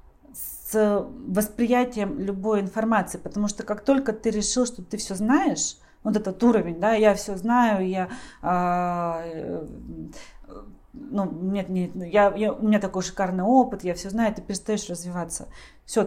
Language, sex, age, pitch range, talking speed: Russian, female, 30-49, 180-220 Hz, 150 wpm